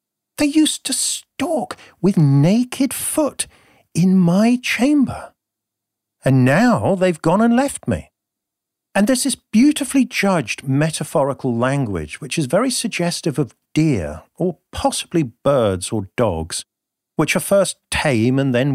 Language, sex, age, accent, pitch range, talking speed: English, male, 50-69, British, 105-170 Hz, 130 wpm